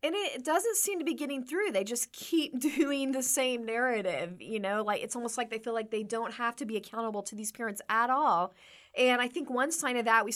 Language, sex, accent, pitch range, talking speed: English, female, American, 215-285 Hz, 250 wpm